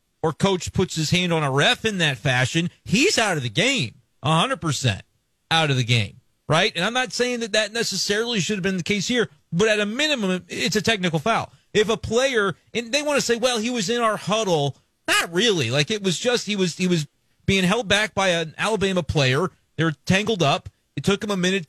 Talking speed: 230 wpm